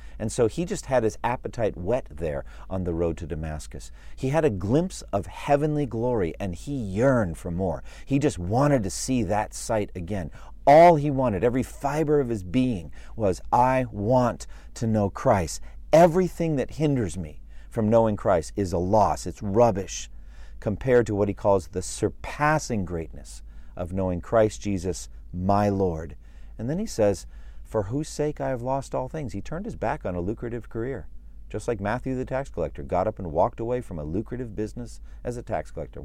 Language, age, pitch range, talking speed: English, 40-59, 85-120 Hz, 190 wpm